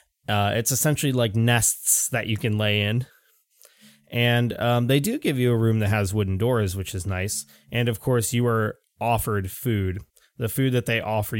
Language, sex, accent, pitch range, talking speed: English, male, American, 100-120 Hz, 195 wpm